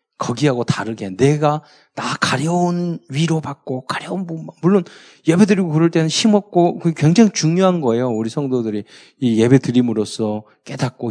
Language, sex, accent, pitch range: Korean, male, native, 125-180 Hz